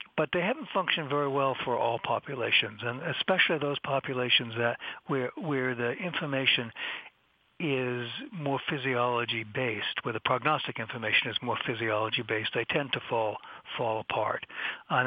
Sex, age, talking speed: male, 60-79, 140 wpm